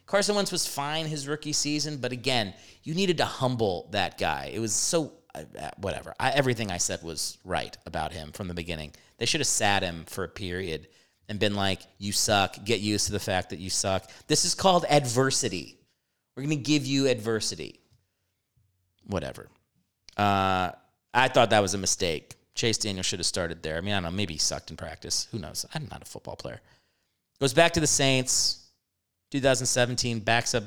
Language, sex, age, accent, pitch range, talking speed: English, male, 30-49, American, 95-135 Hz, 190 wpm